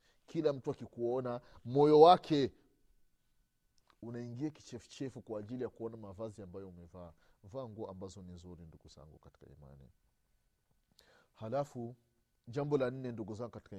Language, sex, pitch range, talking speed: Swahili, male, 100-135 Hz, 115 wpm